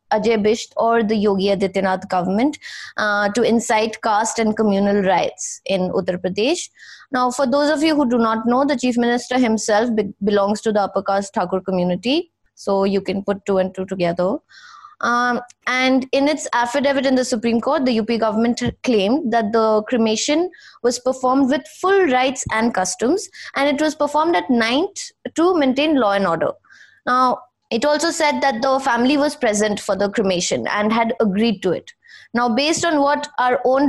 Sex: female